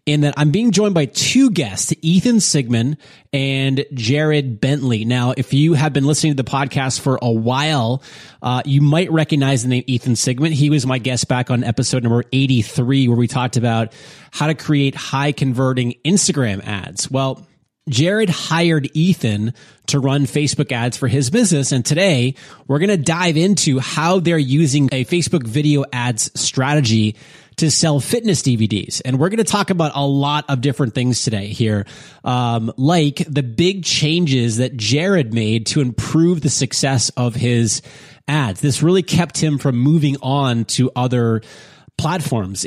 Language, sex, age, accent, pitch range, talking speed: English, male, 20-39, American, 125-150 Hz, 170 wpm